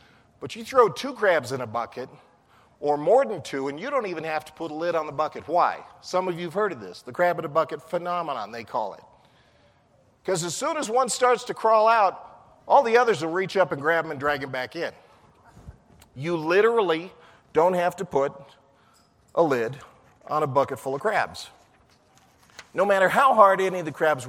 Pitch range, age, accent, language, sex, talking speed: 135-185 Hz, 40-59, American, English, male, 210 wpm